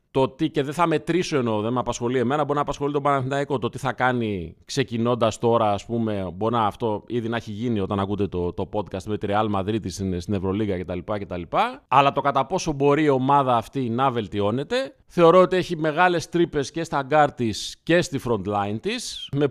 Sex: male